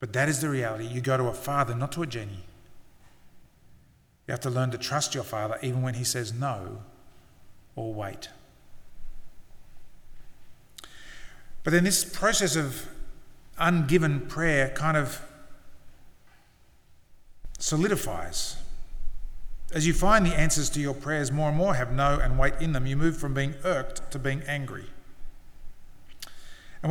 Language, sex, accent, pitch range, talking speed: English, male, Australian, 115-160 Hz, 145 wpm